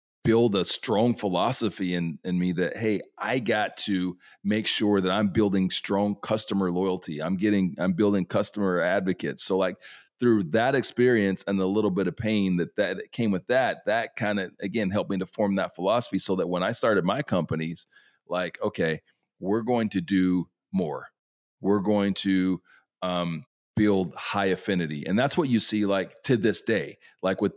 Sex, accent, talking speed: male, American, 185 wpm